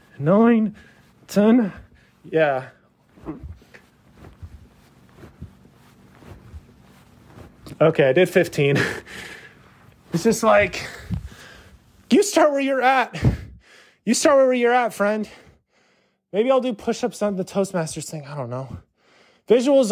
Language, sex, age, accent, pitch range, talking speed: English, male, 20-39, American, 180-245 Hz, 100 wpm